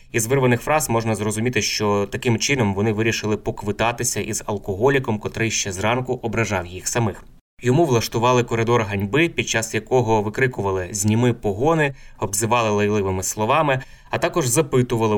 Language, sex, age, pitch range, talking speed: Ukrainian, male, 20-39, 105-130 Hz, 140 wpm